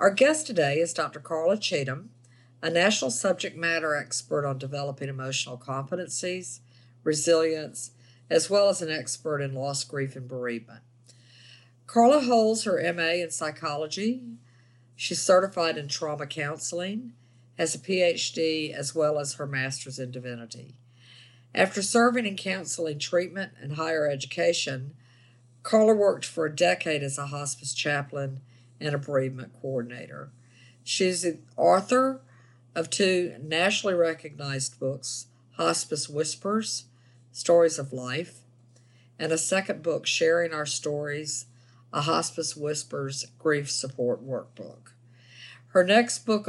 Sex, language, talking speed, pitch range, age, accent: female, English, 125 wpm, 125-165 Hz, 50-69, American